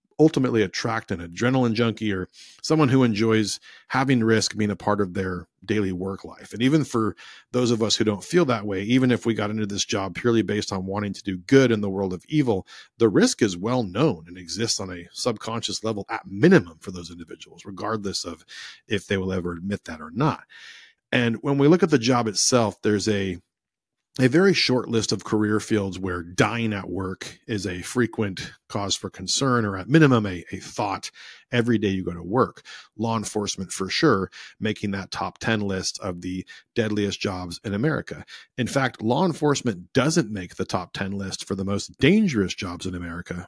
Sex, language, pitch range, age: male, English, 95-120 Hz, 40-59